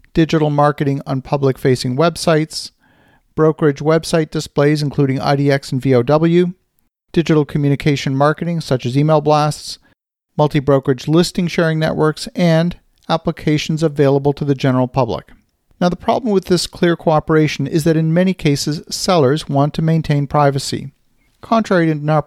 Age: 50-69